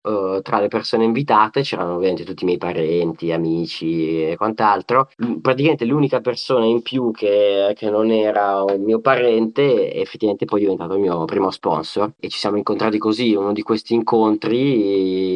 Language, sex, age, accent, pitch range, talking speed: Italian, male, 20-39, native, 95-115 Hz, 165 wpm